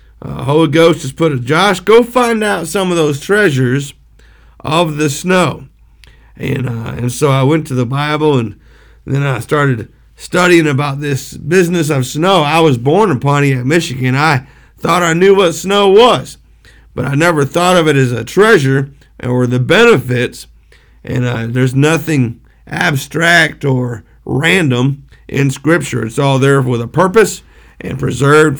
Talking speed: 170 wpm